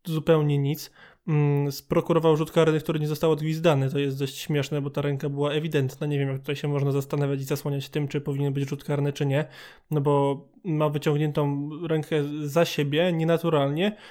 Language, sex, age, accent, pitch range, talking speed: Polish, male, 20-39, native, 145-165 Hz, 185 wpm